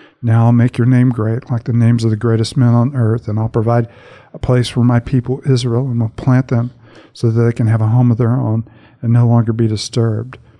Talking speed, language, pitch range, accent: 245 wpm, English, 115-120 Hz, American